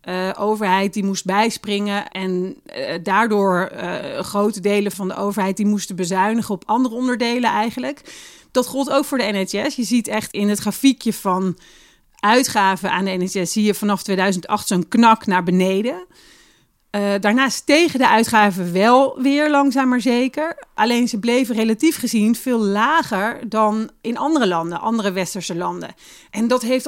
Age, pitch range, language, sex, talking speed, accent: 40-59, 195-245 Hz, Dutch, female, 165 wpm, Dutch